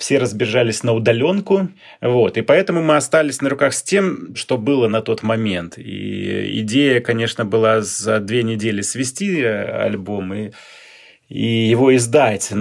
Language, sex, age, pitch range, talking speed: Russian, male, 30-49, 105-130 Hz, 150 wpm